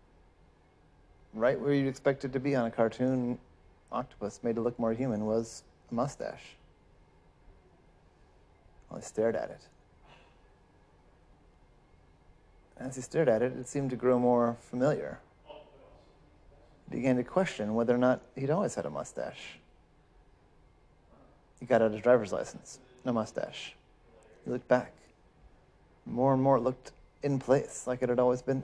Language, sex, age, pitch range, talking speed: English, male, 30-49, 110-135 Hz, 145 wpm